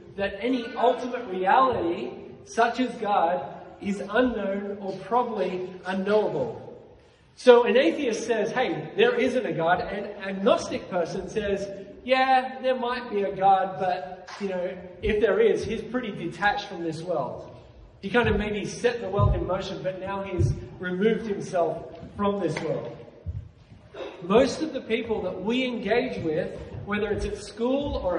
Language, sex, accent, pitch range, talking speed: English, male, Australian, 195-245 Hz, 155 wpm